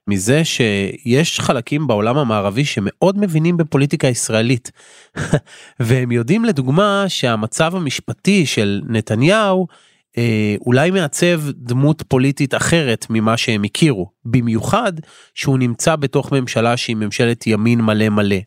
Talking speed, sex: 110 wpm, male